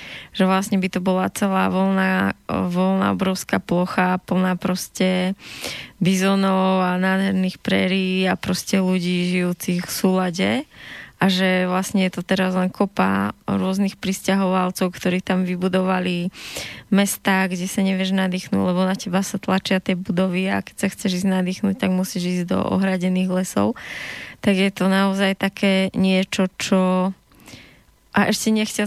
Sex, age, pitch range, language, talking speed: female, 20-39, 185-195 Hz, Slovak, 145 wpm